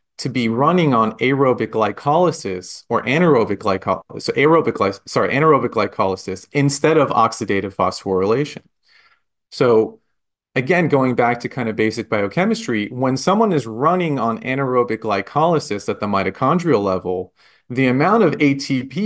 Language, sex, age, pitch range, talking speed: English, male, 30-49, 110-145 Hz, 130 wpm